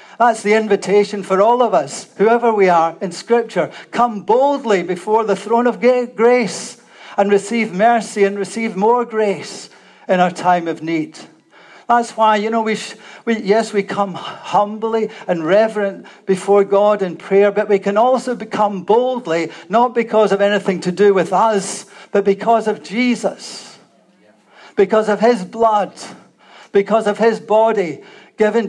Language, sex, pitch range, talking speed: English, male, 190-220 Hz, 155 wpm